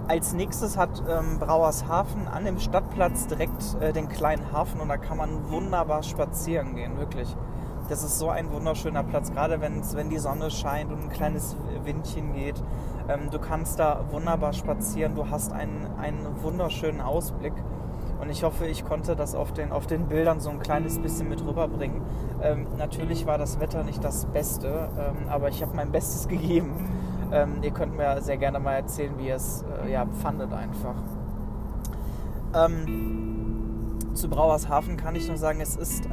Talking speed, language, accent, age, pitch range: 175 wpm, German, German, 20-39, 125-155 Hz